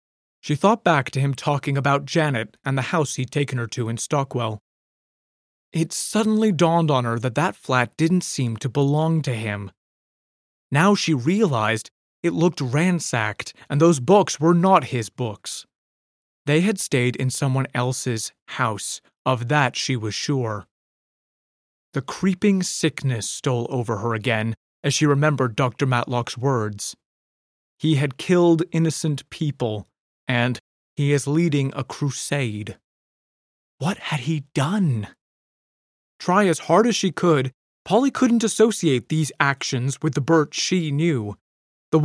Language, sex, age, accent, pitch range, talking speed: English, male, 30-49, American, 120-160 Hz, 145 wpm